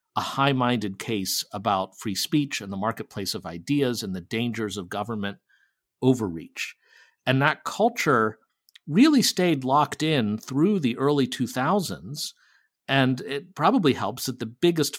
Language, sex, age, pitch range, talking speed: English, male, 50-69, 110-150 Hz, 140 wpm